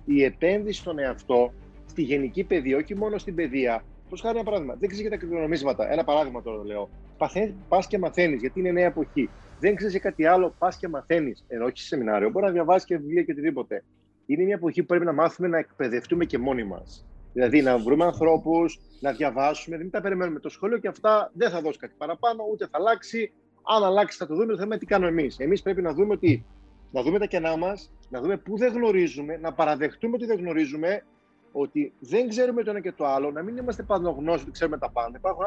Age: 30-49